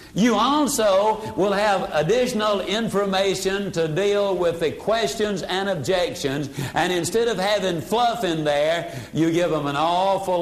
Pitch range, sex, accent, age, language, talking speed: 170-220 Hz, male, American, 60-79, English, 145 wpm